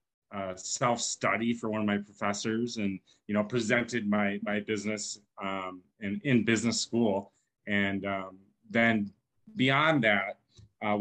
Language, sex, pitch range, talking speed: English, male, 100-120 Hz, 135 wpm